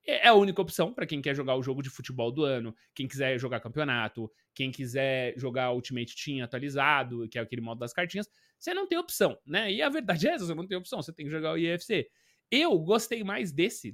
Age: 20-39